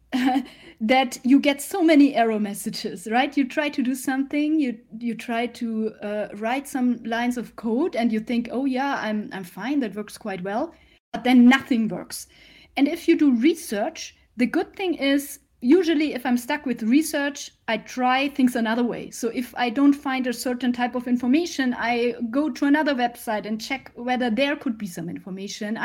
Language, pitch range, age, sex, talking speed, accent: English, 230-285 Hz, 30-49, female, 190 wpm, German